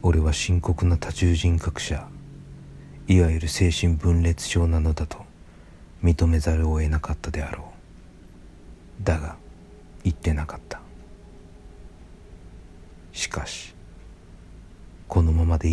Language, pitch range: Japanese, 80-90 Hz